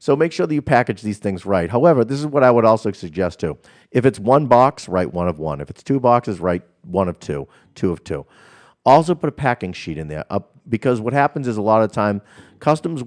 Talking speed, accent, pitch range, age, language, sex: 250 wpm, American, 85-115 Hz, 50-69, English, male